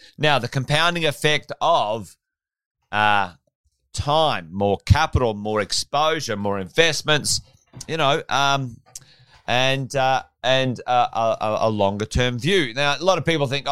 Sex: male